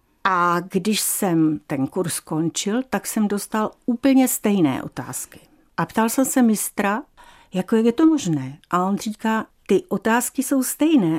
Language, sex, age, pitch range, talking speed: Czech, female, 60-79, 180-240 Hz, 155 wpm